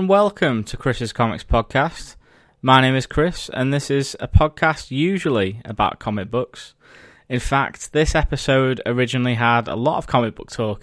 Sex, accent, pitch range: male, British, 115-135 Hz